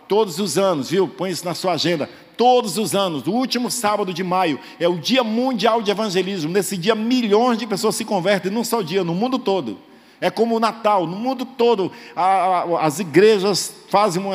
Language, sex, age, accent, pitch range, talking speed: Portuguese, male, 50-69, Brazilian, 170-225 Hz, 195 wpm